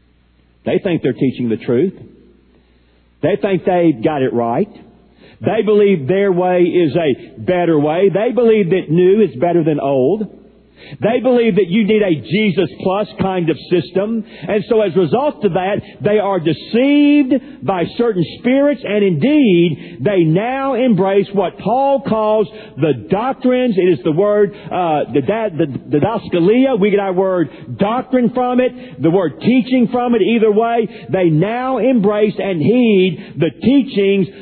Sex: male